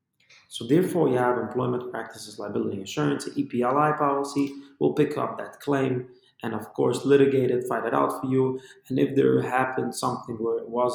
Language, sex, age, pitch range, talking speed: English, male, 20-39, 110-140 Hz, 180 wpm